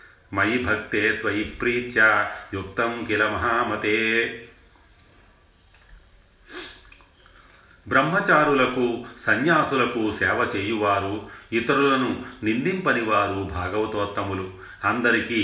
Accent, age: native, 40-59